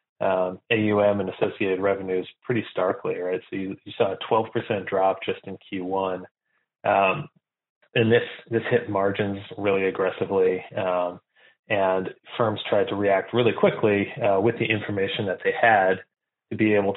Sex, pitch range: male, 95-110 Hz